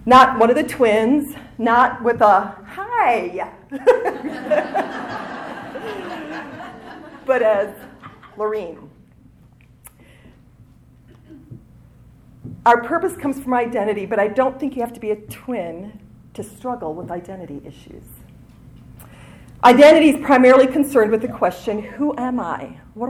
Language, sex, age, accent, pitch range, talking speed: English, female, 40-59, American, 205-265 Hz, 110 wpm